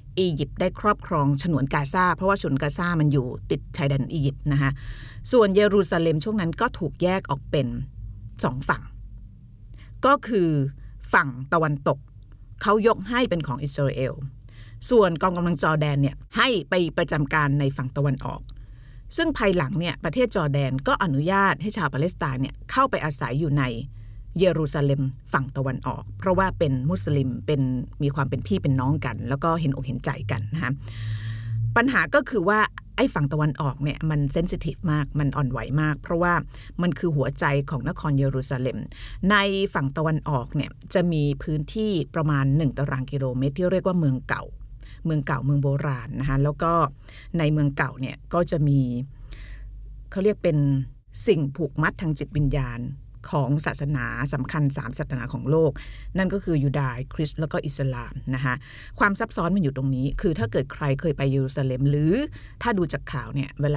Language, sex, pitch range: Thai, female, 130-165 Hz